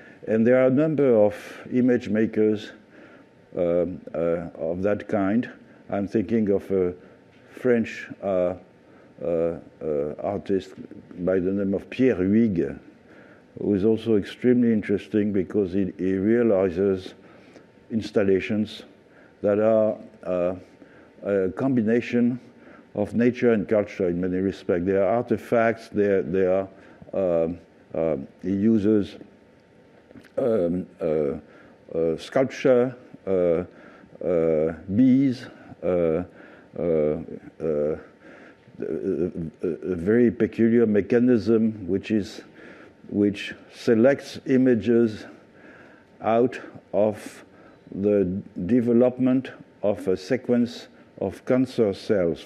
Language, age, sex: English, 60-79, male